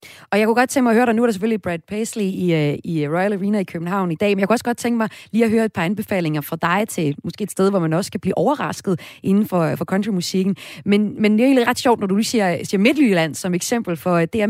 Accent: native